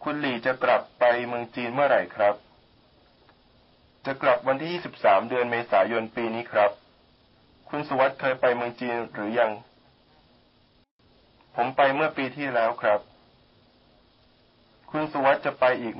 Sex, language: male, Chinese